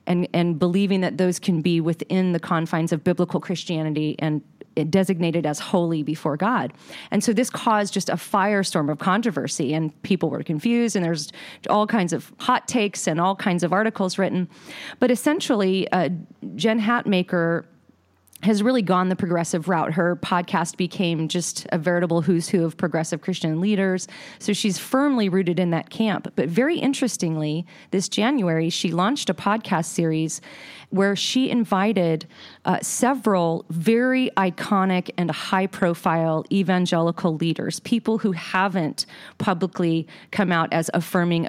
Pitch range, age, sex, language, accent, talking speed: 165-200 Hz, 30-49, female, English, American, 150 wpm